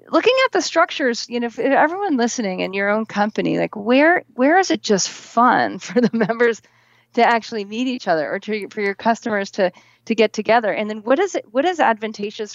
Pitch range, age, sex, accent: 175-235 Hz, 30-49, female, American